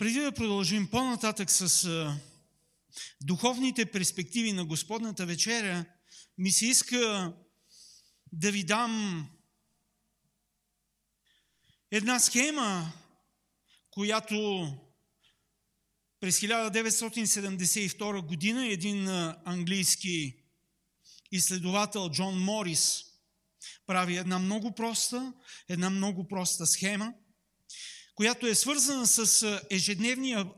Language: Bulgarian